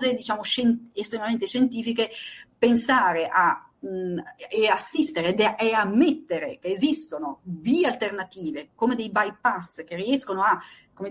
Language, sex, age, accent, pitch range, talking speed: Italian, female, 40-59, native, 185-240 Hz, 110 wpm